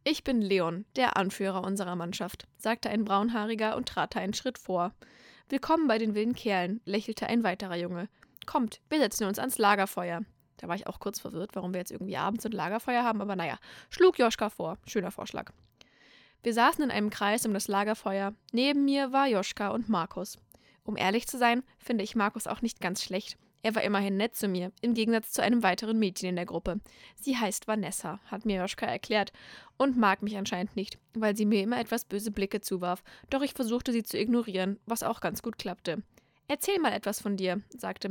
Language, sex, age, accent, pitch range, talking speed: German, female, 20-39, German, 195-240 Hz, 200 wpm